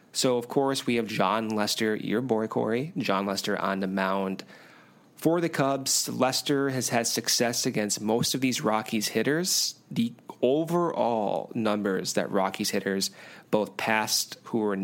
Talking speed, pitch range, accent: 155 wpm, 100-140 Hz, American